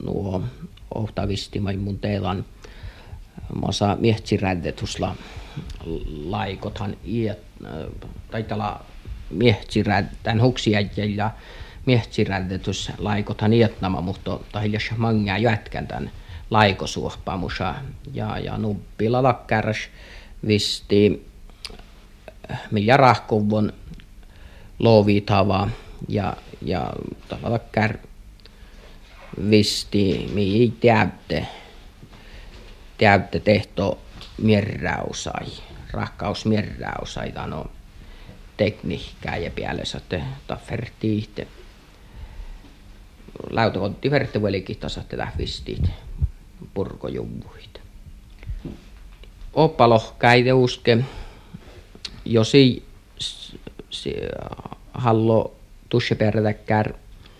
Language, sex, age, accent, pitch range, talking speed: Finnish, male, 50-69, native, 95-110 Hz, 60 wpm